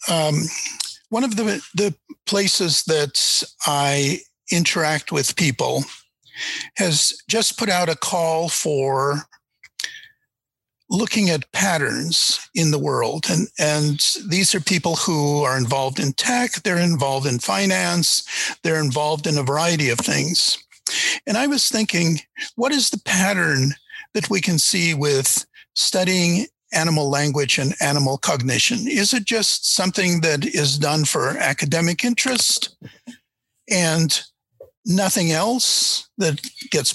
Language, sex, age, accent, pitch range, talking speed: English, male, 50-69, American, 150-220 Hz, 130 wpm